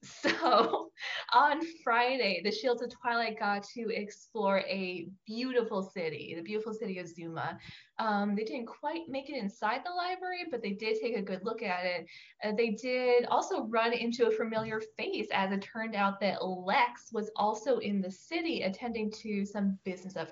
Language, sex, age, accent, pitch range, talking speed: English, female, 20-39, American, 195-250 Hz, 180 wpm